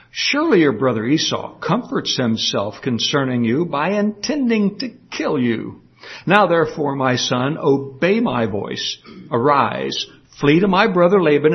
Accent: American